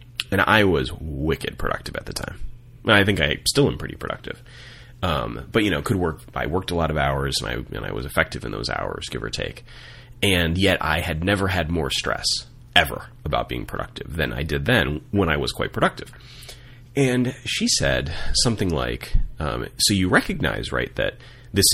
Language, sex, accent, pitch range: English, male, American, 85-120 Hz